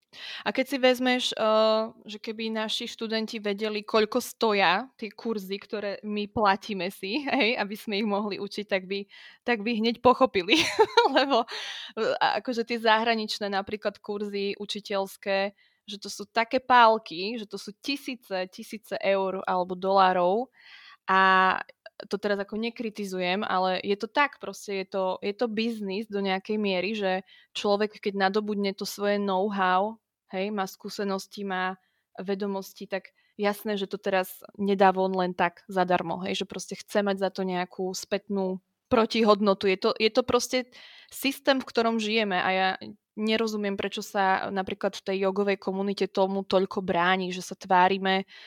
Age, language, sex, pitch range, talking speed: 20-39, Slovak, female, 190-220 Hz, 150 wpm